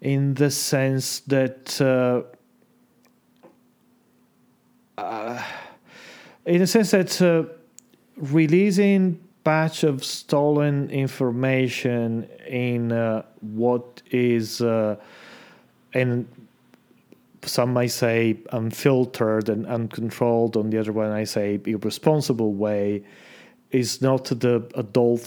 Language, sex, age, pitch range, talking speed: English, male, 30-49, 115-135 Hz, 95 wpm